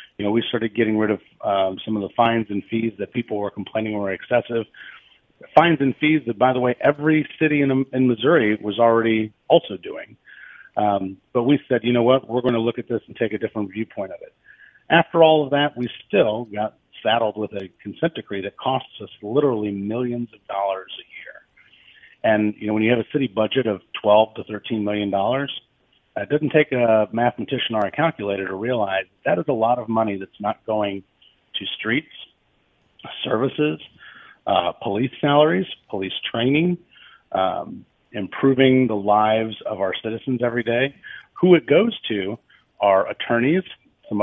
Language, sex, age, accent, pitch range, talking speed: English, male, 40-59, American, 105-130 Hz, 185 wpm